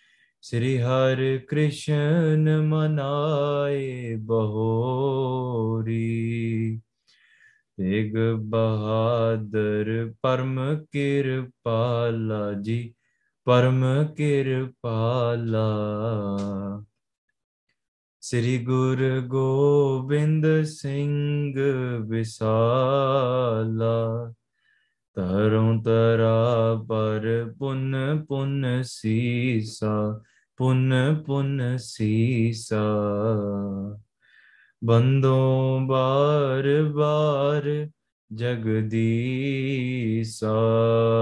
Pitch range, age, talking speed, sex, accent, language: 110-135 Hz, 20-39, 40 wpm, male, Indian, English